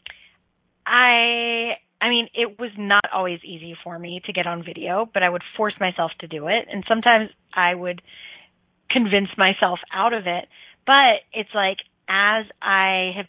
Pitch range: 185-235 Hz